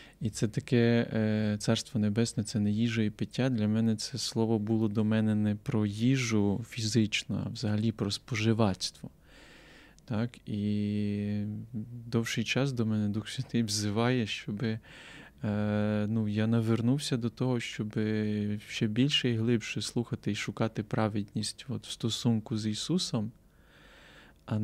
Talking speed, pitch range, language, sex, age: 130 wpm, 105-125 Hz, Ukrainian, male, 20-39